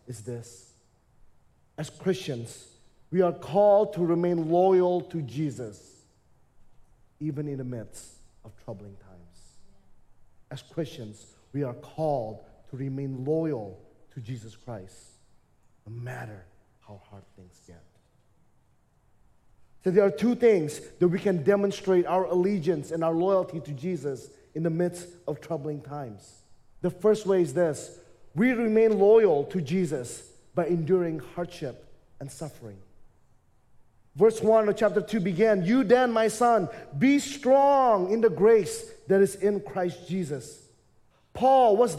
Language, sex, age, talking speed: English, male, 30-49, 135 wpm